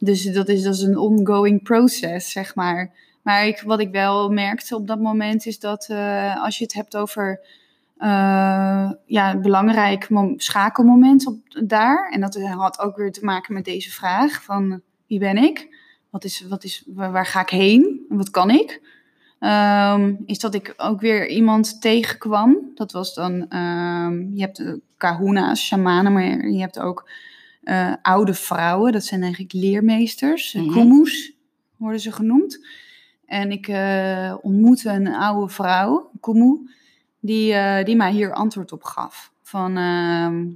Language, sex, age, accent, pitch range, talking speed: Dutch, female, 20-39, Dutch, 190-245 Hz, 160 wpm